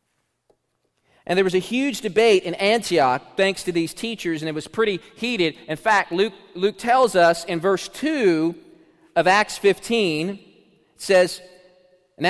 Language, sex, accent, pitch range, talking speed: English, male, American, 155-215 Hz, 155 wpm